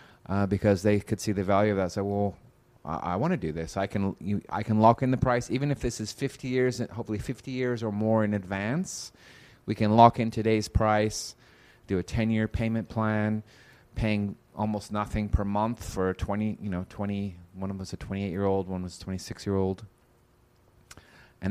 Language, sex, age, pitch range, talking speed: English, male, 30-49, 95-115 Hz, 195 wpm